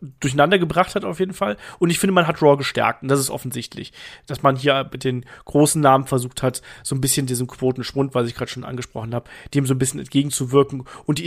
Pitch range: 135-170 Hz